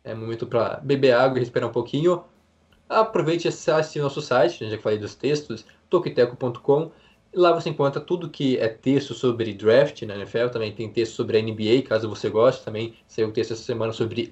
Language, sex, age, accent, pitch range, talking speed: Portuguese, male, 20-39, Brazilian, 115-150 Hz, 195 wpm